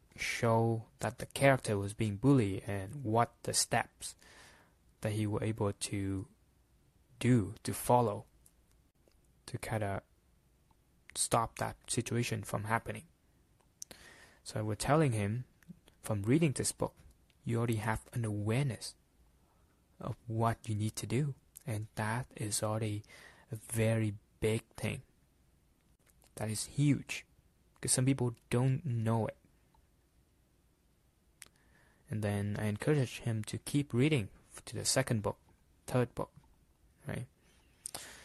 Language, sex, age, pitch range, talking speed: English, male, 20-39, 95-120 Hz, 125 wpm